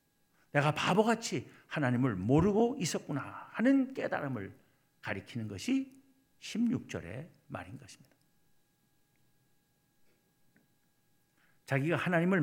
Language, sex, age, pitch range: Korean, male, 60-79, 135-190 Hz